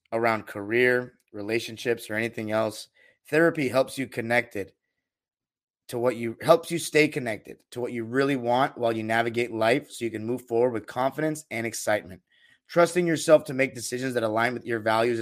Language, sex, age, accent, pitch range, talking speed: English, male, 30-49, American, 115-150 Hz, 180 wpm